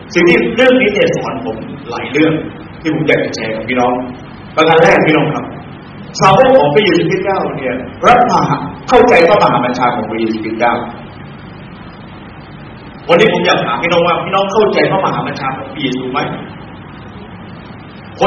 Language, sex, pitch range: Thai, male, 190-255 Hz